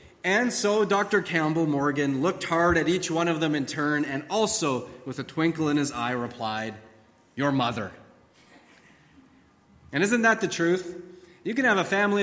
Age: 30-49